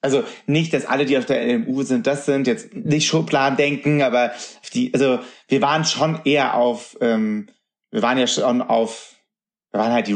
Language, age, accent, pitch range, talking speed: German, 30-49, German, 115-155 Hz, 200 wpm